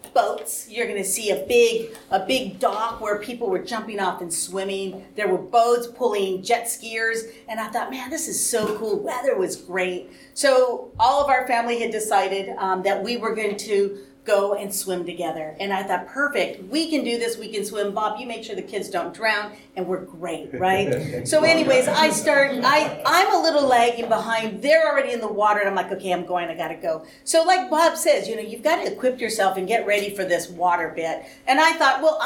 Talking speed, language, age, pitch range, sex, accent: 225 wpm, English, 40-59, 190-270 Hz, female, American